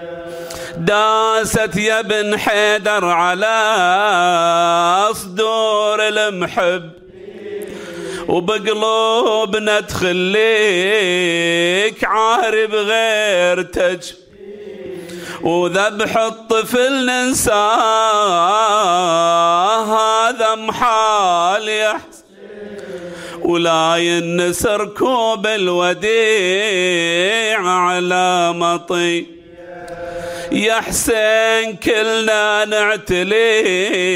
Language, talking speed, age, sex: Arabic, 45 wpm, 50-69, male